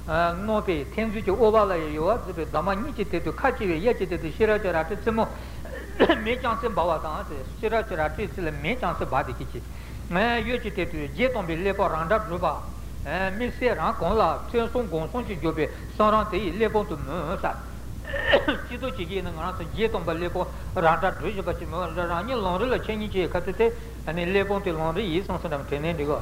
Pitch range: 165-220 Hz